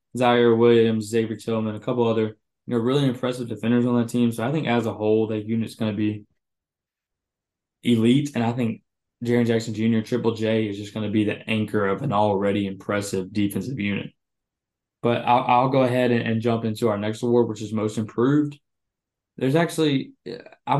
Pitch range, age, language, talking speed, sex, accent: 110-125 Hz, 20-39, English, 190 wpm, male, American